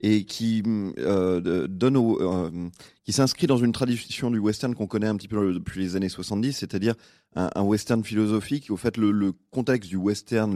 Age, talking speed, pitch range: 30-49, 195 wpm, 95-125 Hz